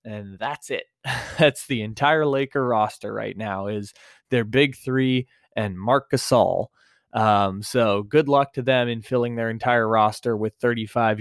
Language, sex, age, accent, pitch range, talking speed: English, male, 20-39, American, 115-140 Hz, 160 wpm